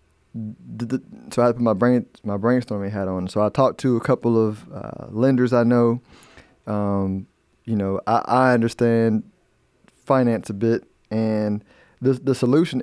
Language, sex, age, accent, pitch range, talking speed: English, male, 20-39, American, 105-120 Hz, 165 wpm